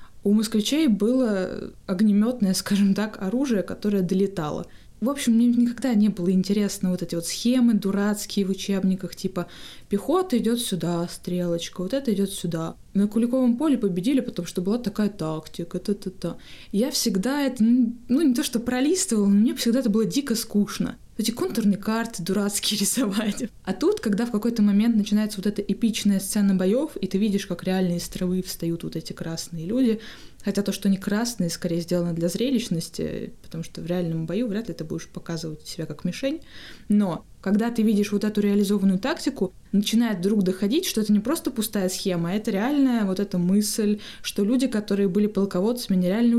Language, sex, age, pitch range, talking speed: Russian, female, 20-39, 185-230 Hz, 175 wpm